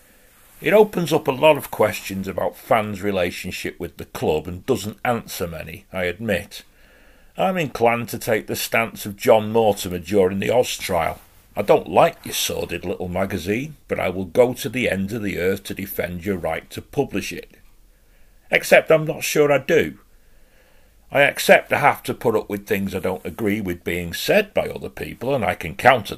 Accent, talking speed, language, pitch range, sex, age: British, 195 wpm, English, 100-145 Hz, male, 40-59